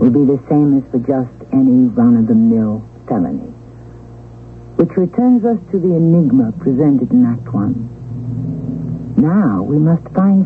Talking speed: 140 wpm